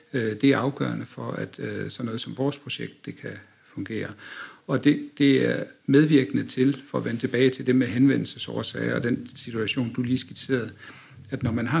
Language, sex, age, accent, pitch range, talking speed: Danish, male, 60-79, native, 130-145 Hz, 190 wpm